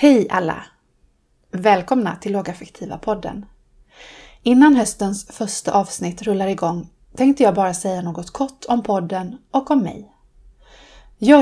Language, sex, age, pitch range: Swedish, female, 30-49, 185-250 Hz